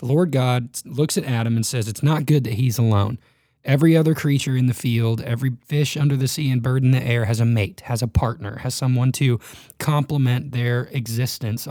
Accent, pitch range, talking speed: American, 115-140 Hz, 215 wpm